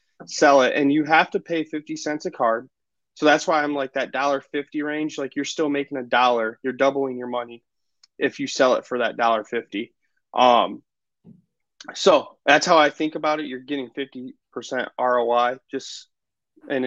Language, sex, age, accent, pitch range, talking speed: English, male, 30-49, American, 135-165 Hz, 190 wpm